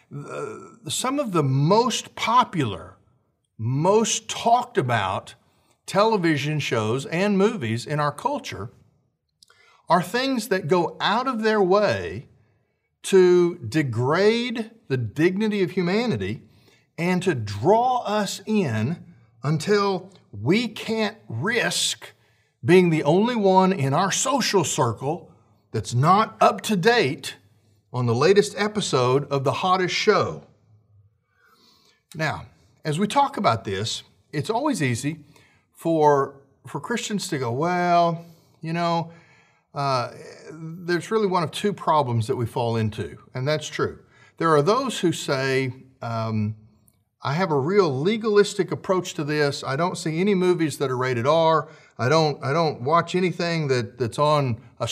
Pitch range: 130-195 Hz